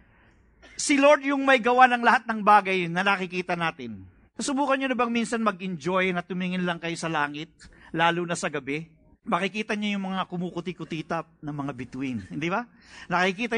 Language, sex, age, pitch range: English, male, 50-69, 200-255 Hz